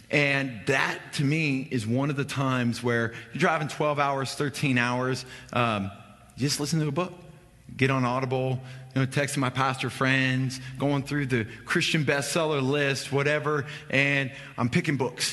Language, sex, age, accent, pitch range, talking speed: English, male, 30-49, American, 110-135 Hz, 165 wpm